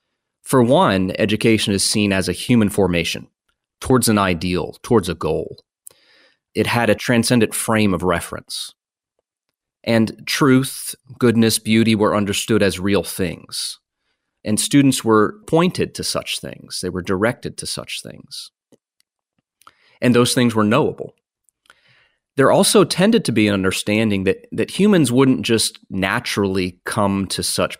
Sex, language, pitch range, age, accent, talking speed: male, English, 95-120 Hz, 30-49, American, 140 wpm